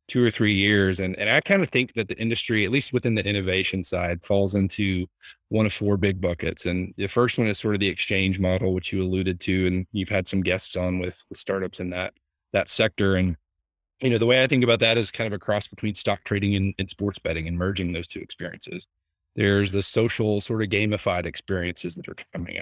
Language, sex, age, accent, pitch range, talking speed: English, male, 30-49, American, 90-105 Hz, 235 wpm